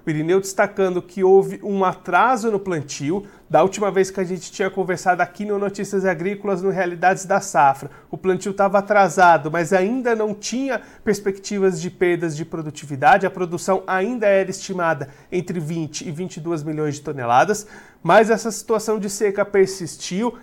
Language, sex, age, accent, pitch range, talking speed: Portuguese, male, 40-59, Brazilian, 175-205 Hz, 160 wpm